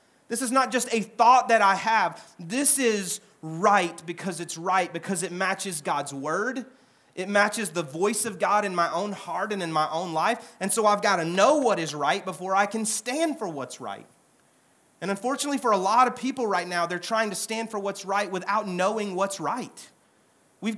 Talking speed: 210 wpm